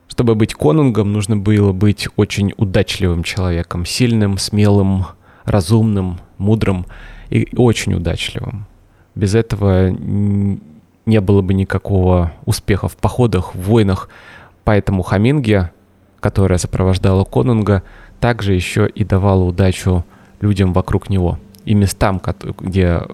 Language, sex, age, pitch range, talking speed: Russian, male, 20-39, 95-115 Hz, 110 wpm